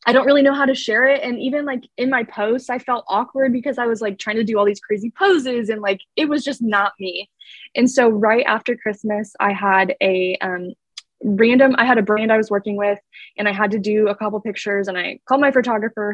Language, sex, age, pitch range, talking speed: English, female, 20-39, 195-240 Hz, 245 wpm